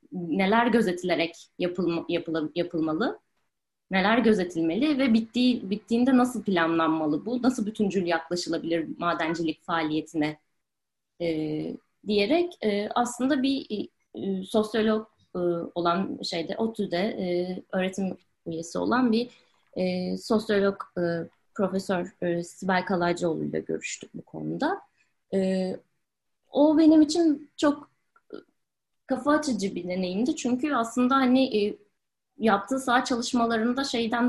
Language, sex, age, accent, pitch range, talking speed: Turkish, female, 30-49, native, 180-250 Hz, 105 wpm